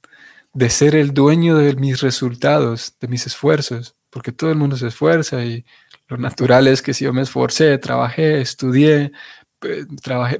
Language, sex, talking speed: Spanish, male, 160 wpm